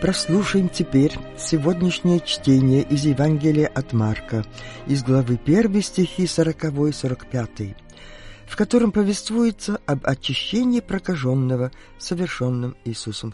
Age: 50-69